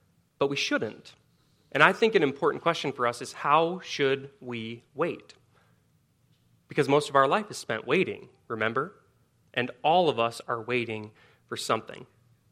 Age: 30-49